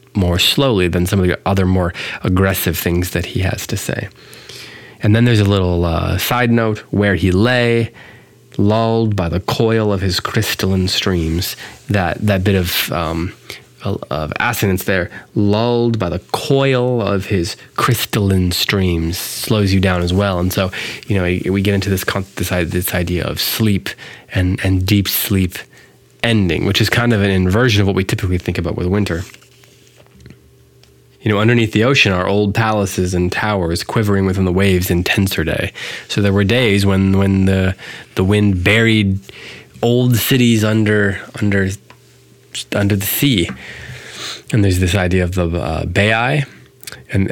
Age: 20-39